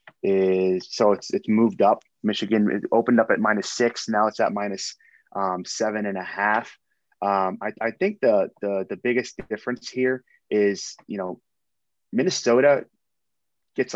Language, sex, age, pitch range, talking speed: English, male, 20-39, 100-115 Hz, 155 wpm